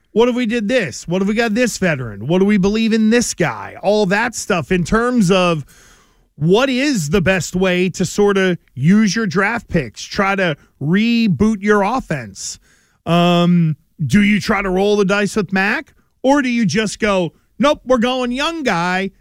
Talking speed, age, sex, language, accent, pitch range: 190 wpm, 40-59, male, English, American, 180-230 Hz